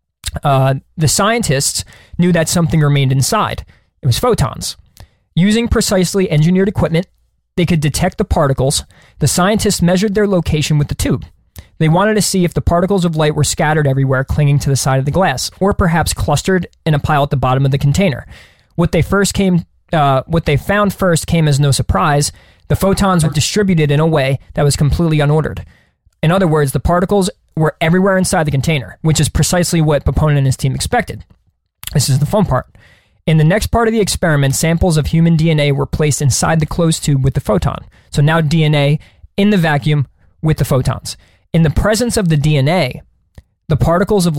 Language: English